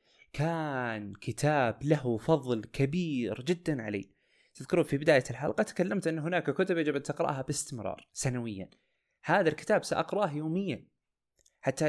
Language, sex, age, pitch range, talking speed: Arabic, male, 20-39, 110-150 Hz, 125 wpm